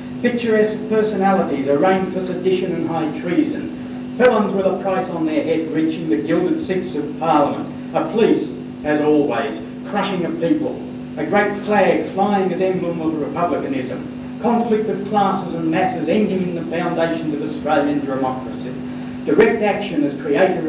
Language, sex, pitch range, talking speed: English, male, 150-245 Hz, 150 wpm